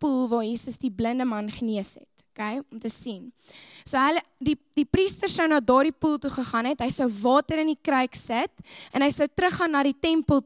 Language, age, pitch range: English, 10-29, 240-295 Hz